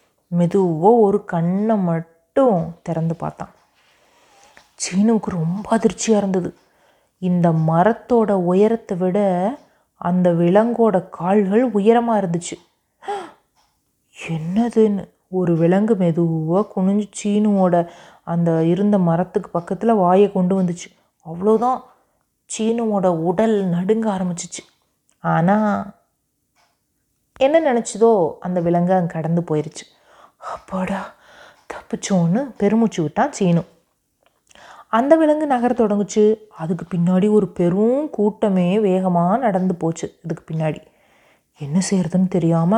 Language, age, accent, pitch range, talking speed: Tamil, 30-49, native, 175-220 Hz, 95 wpm